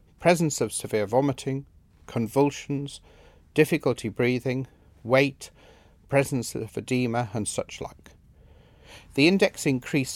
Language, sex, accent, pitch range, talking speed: English, male, British, 105-145 Hz, 100 wpm